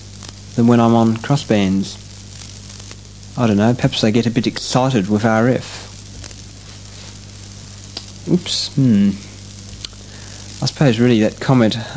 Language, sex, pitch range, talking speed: English, male, 100-115 Hz, 115 wpm